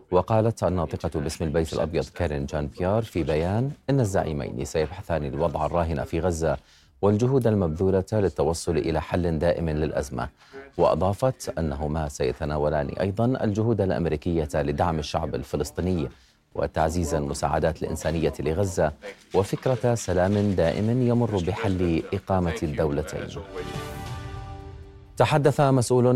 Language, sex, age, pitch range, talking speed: Arabic, male, 30-49, 80-100 Hz, 105 wpm